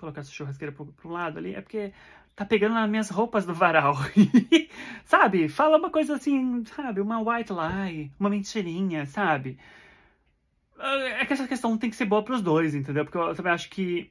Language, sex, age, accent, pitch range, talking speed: Portuguese, male, 30-49, Brazilian, 150-200 Hz, 185 wpm